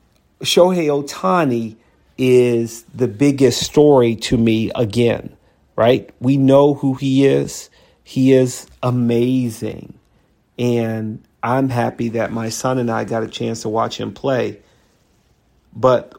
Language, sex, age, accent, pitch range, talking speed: English, male, 40-59, American, 110-130 Hz, 125 wpm